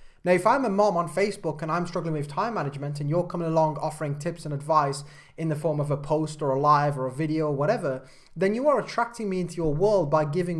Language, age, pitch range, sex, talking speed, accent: English, 20-39, 155-215 Hz, male, 255 wpm, British